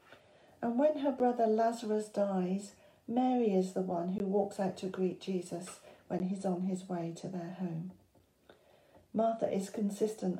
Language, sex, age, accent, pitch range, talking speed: English, female, 40-59, British, 185-220 Hz, 155 wpm